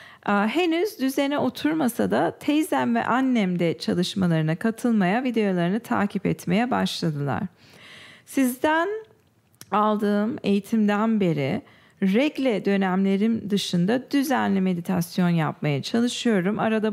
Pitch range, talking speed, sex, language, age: 185-240 Hz, 90 wpm, female, English, 40-59